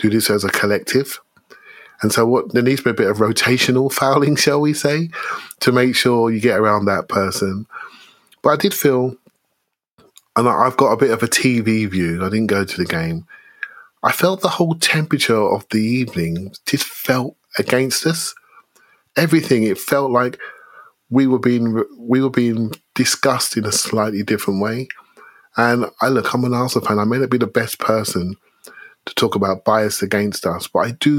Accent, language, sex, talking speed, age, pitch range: British, English, male, 190 wpm, 30-49, 95-130 Hz